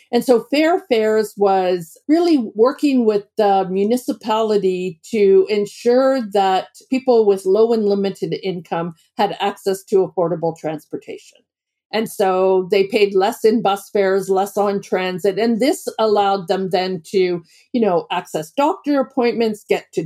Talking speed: 140 wpm